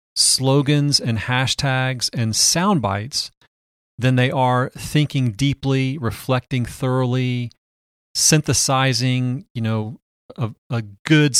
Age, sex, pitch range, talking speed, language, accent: 40-59, male, 115-135 Hz, 100 wpm, English, American